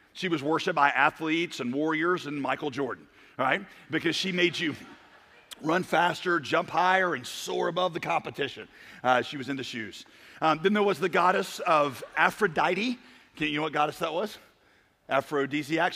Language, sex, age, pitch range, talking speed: English, male, 40-59, 150-180 Hz, 175 wpm